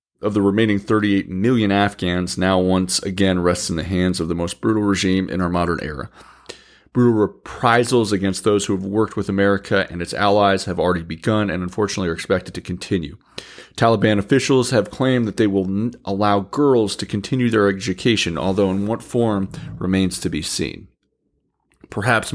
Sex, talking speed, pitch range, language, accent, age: male, 175 wpm, 95-110 Hz, English, American, 40-59